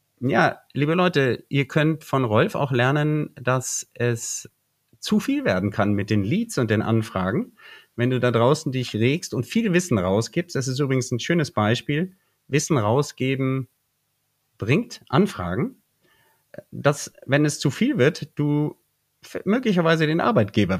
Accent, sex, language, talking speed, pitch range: German, male, German, 145 wpm, 115-150 Hz